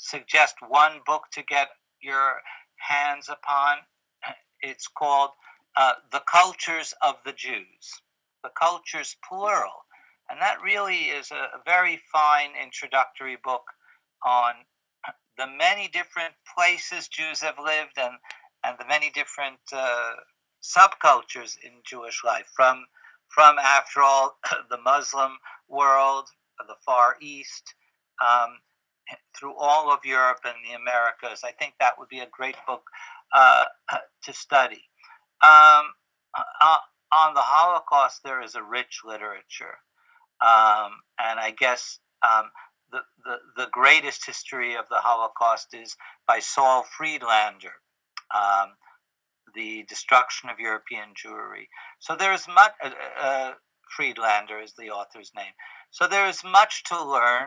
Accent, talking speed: American, 130 wpm